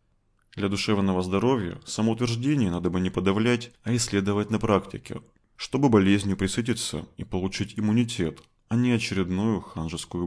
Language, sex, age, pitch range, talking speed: Russian, male, 20-39, 95-115 Hz, 130 wpm